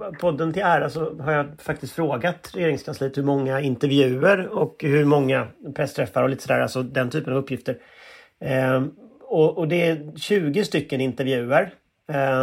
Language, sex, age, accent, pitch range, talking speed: Swedish, male, 30-49, native, 135-190 Hz, 165 wpm